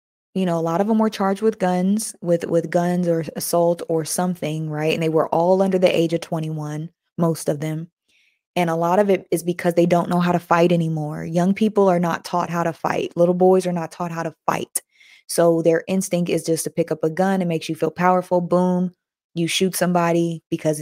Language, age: English, 20-39